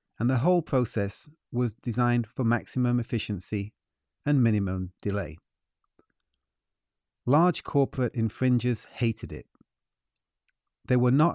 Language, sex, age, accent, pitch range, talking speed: English, male, 40-59, British, 110-140 Hz, 105 wpm